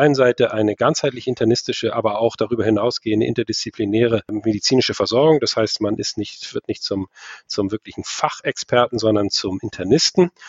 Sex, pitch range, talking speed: male, 105-120 Hz, 135 wpm